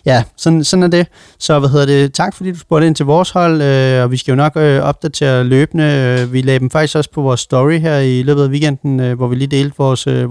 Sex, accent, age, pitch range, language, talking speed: male, native, 30-49, 130-155 Hz, Danish, 270 wpm